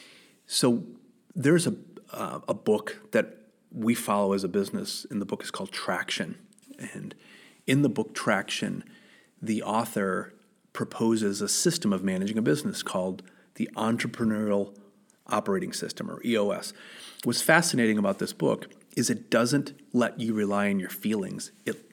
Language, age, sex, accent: English, 30-49, male, American